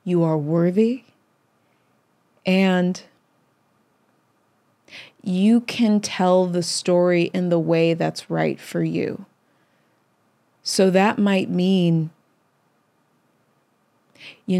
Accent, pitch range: American, 175-210 Hz